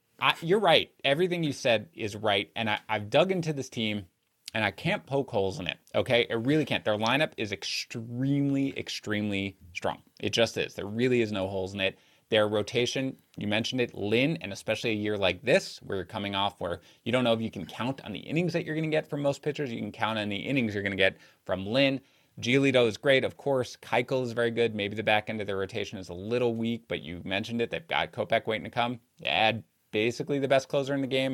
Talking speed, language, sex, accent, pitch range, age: 245 wpm, English, male, American, 105-140 Hz, 20-39